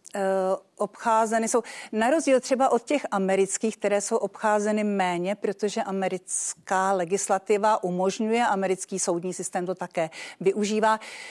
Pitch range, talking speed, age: 190-230 Hz, 115 wpm, 50-69